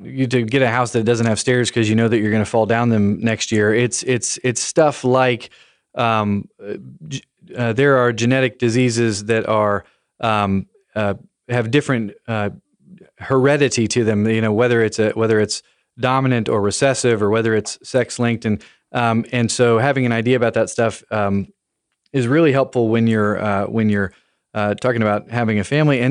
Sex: male